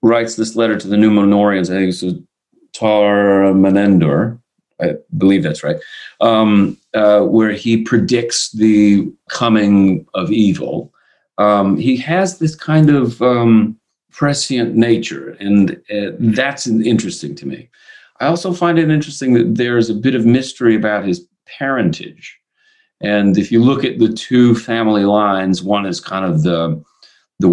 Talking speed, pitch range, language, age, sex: 145 wpm, 100-125 Hz, English, 40-59, male